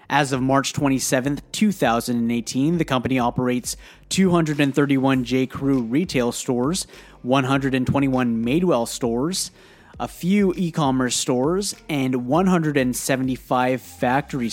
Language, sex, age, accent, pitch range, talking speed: English, male, 30-49, American, 120-150 Hz, 90 wpm